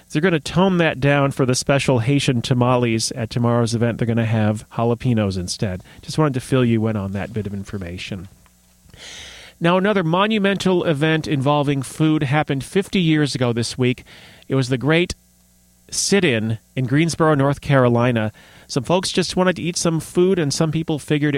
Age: 30-49